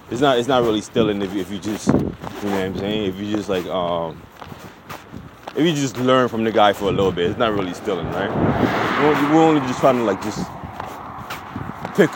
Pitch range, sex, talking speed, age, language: 105-145 Hz, male, 220 wpm, 20-39, English